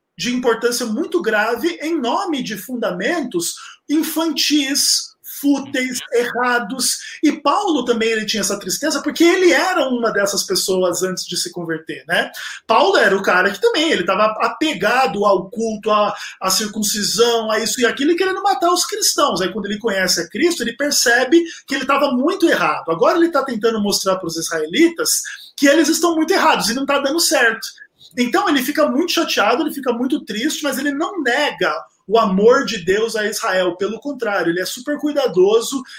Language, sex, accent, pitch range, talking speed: Portuguese, male, Brazilian, 190-295 Hz, 175 wpm